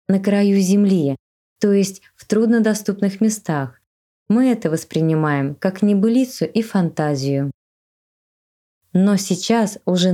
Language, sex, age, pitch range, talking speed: Russian, female, 20-39, 155-195 Hz, 105 wpm